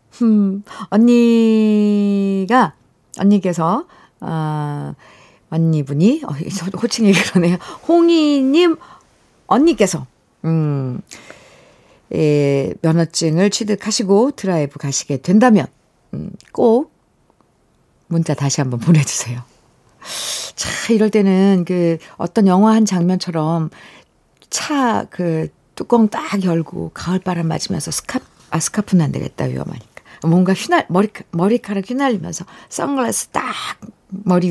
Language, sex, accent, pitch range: Korean, female, native, 170-245 Hz